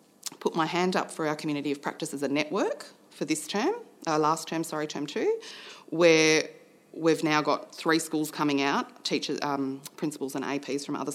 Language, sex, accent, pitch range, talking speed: English, female, Australian, 135-155 Hz, 195 wpm